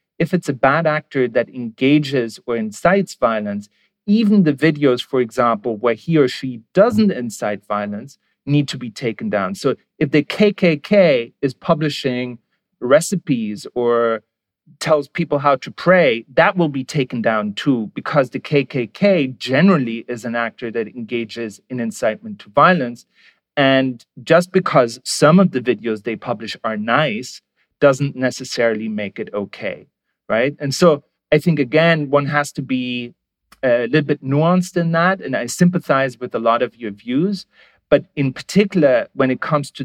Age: 40-59